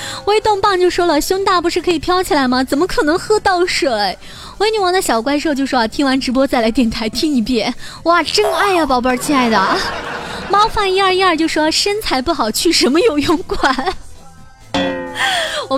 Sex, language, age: female, Chinese, 20-39